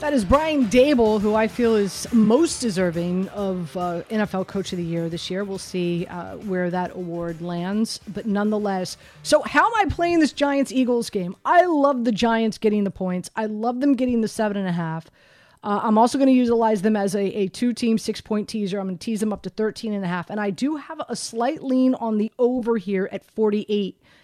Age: 30-49